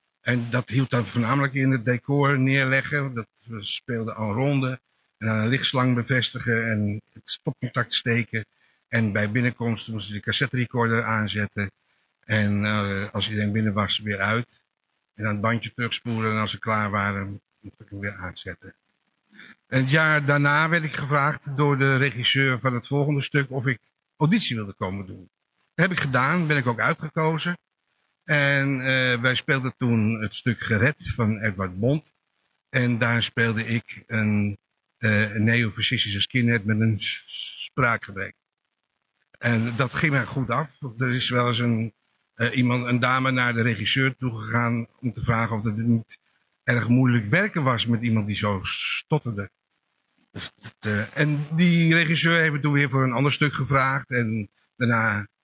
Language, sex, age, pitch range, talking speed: Dutch, male, 60-79, 110-135 Hz, 165 wpm